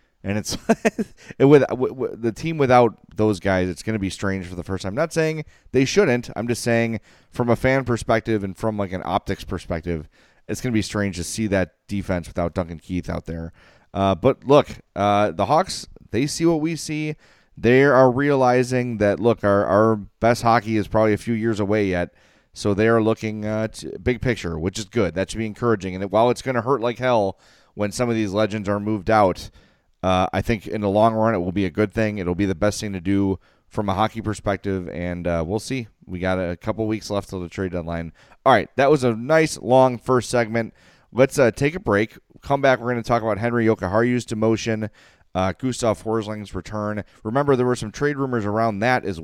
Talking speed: 225 wpm